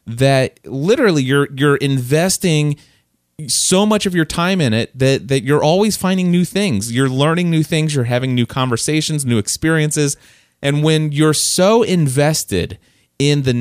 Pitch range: 110-155 Hz